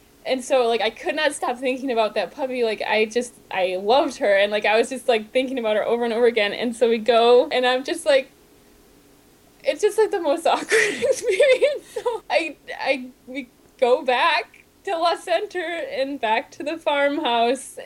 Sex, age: female, 10-29